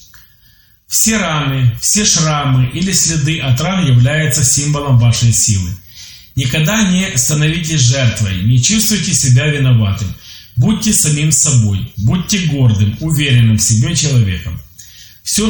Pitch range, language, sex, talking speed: 115-175 Hz, Polish, male, 115 wpm